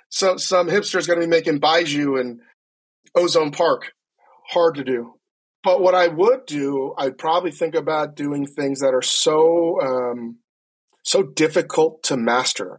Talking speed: 155 wpm